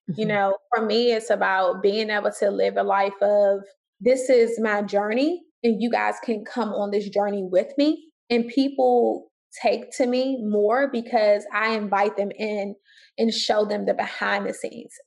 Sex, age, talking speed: female, 20-39, 180 wpm